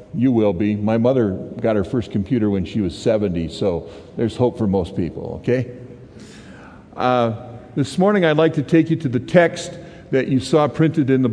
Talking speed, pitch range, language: 195 wpm, 115-160 Hz, English